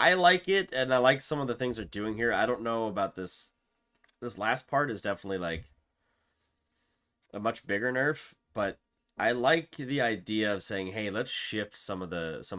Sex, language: male, English